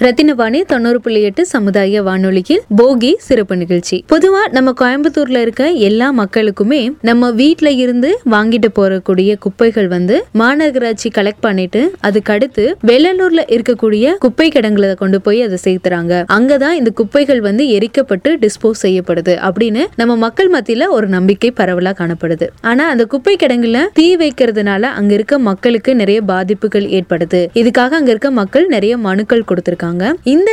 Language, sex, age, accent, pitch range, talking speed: Tamil, female, 20-39, native, 200-270 Hz, 140 wpm